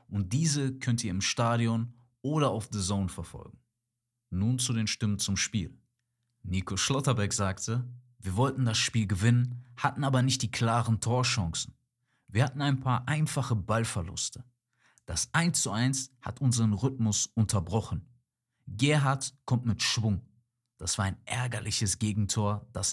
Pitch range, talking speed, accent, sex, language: 105-130 Hz, 145 wpm, German, male, German